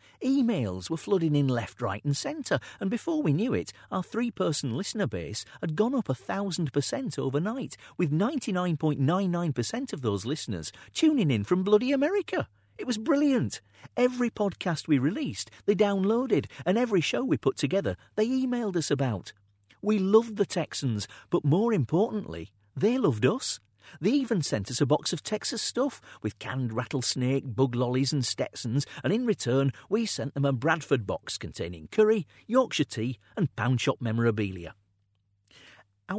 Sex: male